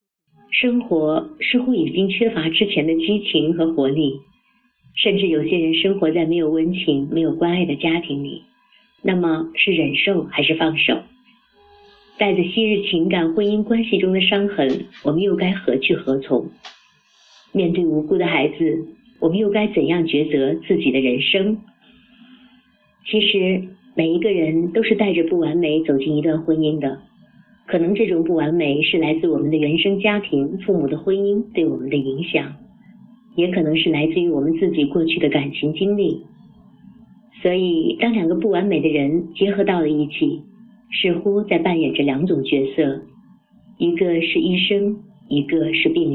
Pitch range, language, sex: 160-210 Hz, Chinese, female